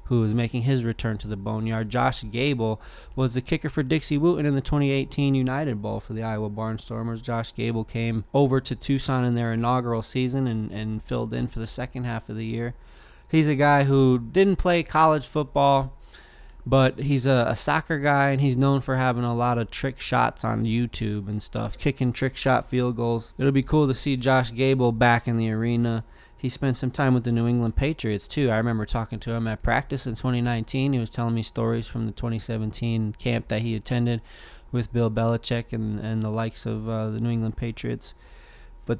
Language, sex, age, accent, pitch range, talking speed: English, male, 20-39, American, 115-135 Hz, 210 wpm